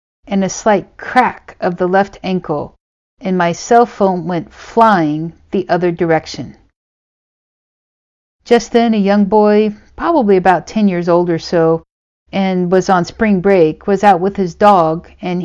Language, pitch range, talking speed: English, 175-220 Hz, 155 wpm